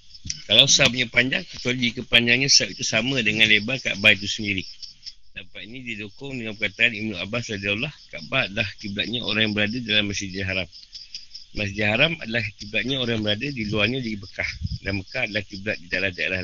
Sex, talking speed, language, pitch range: male, 170 wpm, Malay, 100-120 Hz